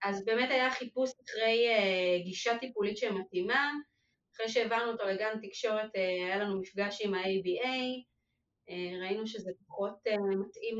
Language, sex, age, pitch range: Hebrew, female, 30-49, 190-240 Hz